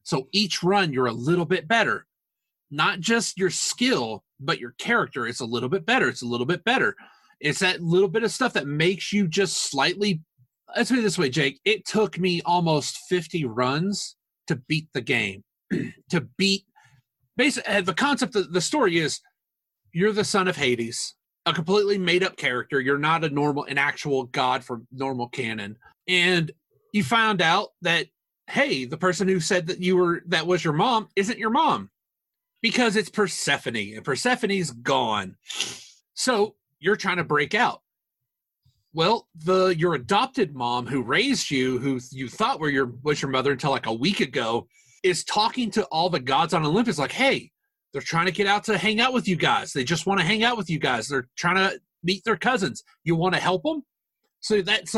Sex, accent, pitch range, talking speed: male, American, 135-205 Hz, 195 wpm